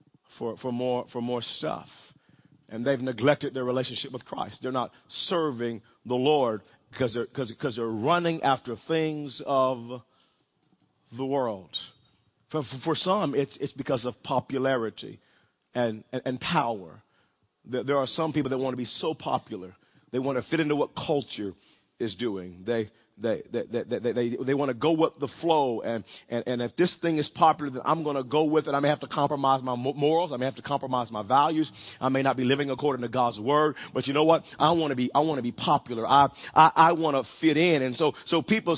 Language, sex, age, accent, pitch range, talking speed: English, male, 40-59, American, 125-165 Hz, 210 wpm